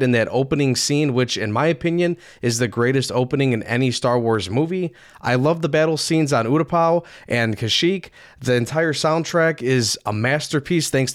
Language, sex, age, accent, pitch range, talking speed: English, male, 20-39, American, 125-165 Hz, 180 wpm